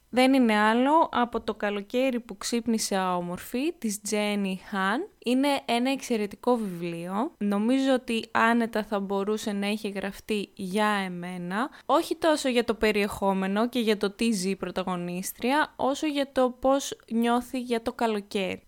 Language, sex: Greek, female